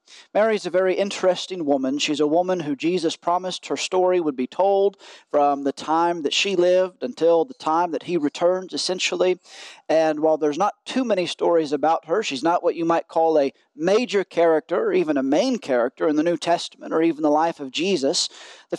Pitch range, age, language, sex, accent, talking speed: 150-185 Hz, 40-59, English, male, American, 200 wpm